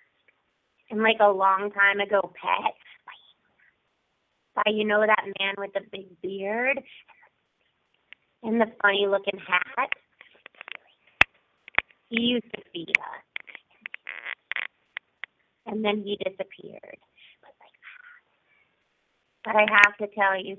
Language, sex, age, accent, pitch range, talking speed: English, female, 30-49, American, 200-255 Hz, 105 wpm